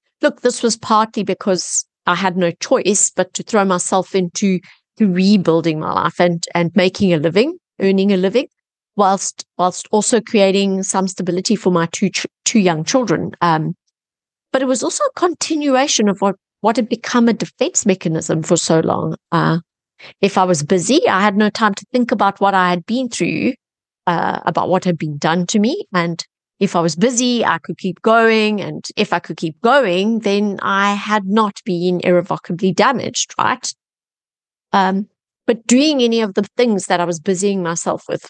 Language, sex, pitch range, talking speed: English, female, 180-220 Hz, 180 wpm